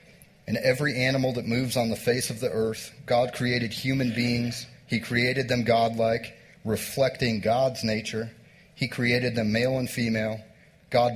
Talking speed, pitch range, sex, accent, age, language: 155 wpm, 115-140 Hz, male, American, 40-59, English